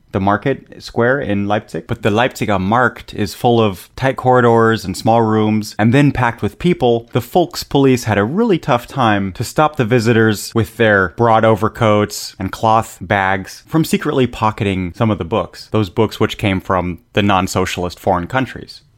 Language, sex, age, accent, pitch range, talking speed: English, male, 30-49, American, 100-130 Hz, 180 wpm